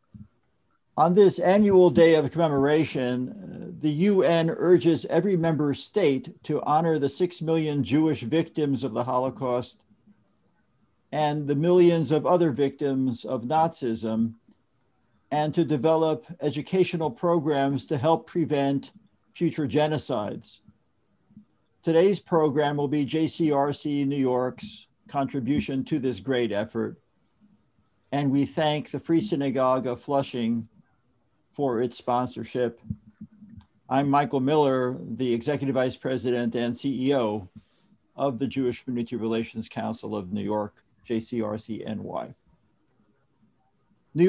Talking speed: 110 wpm